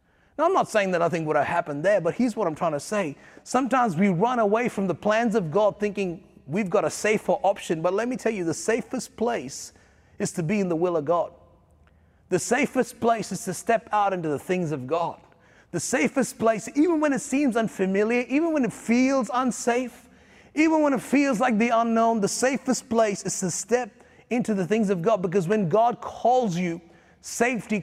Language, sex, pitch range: English, male, 190-240 Hz